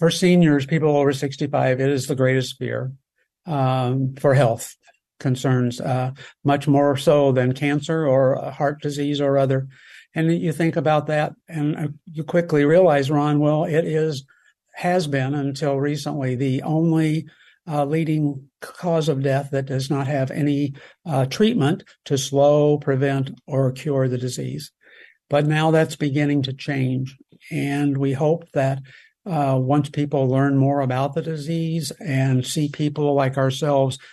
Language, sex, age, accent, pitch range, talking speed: English, male, 60-79, American, 135-155 Hz, 155 wpm